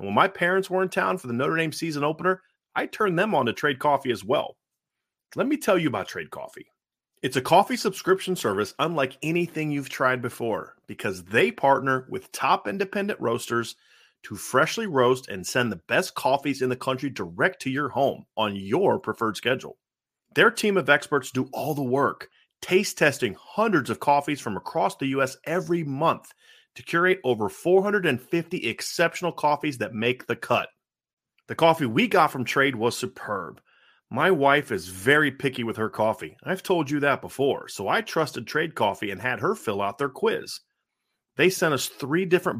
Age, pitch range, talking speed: 30-49, 130-175 Hz, 185 wpm